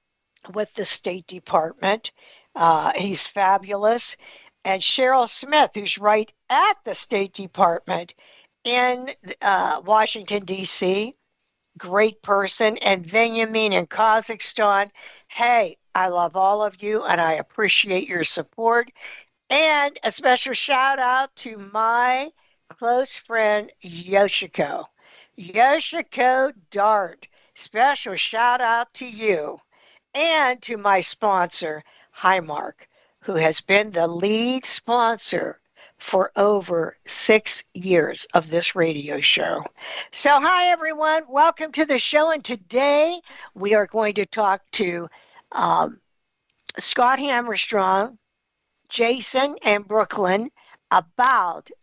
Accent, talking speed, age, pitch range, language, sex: American, 110 wpm, 60-79, 190-255 Hz, English, female